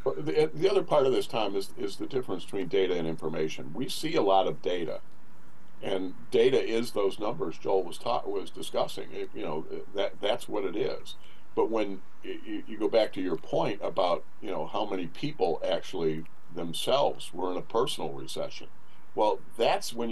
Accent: American